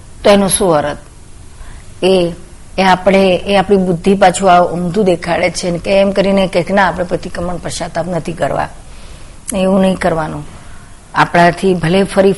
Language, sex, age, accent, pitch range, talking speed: Gujarati, female, 50-69, native, 150-195 Hz, 65 wpm